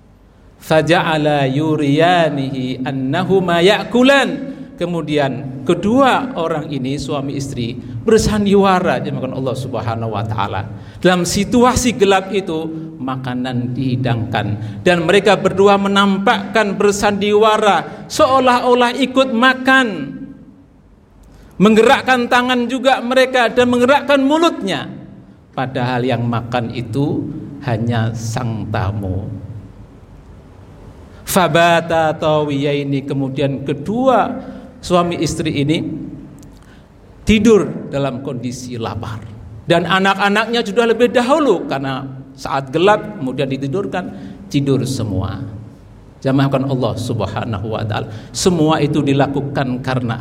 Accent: native